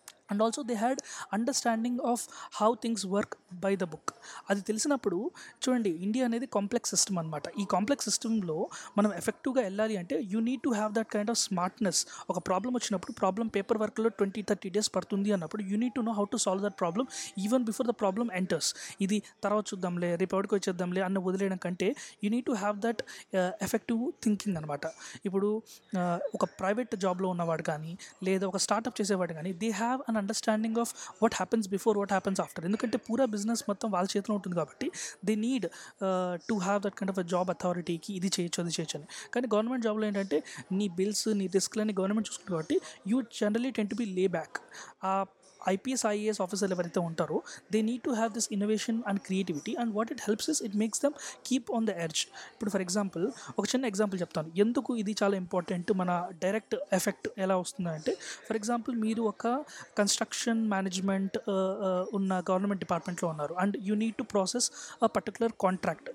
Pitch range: 185-225 Hz